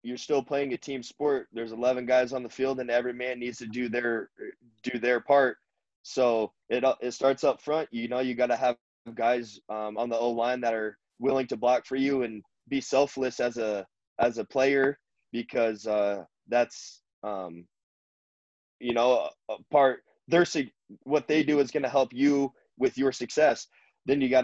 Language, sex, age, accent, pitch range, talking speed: English, male, 20-39, American, 115-130 Hz, 190 wpm